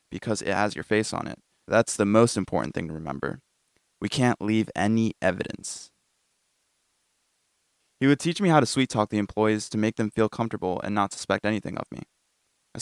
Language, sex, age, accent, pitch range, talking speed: English, male, 20-39, American, 95-115 Hz, 185 wpm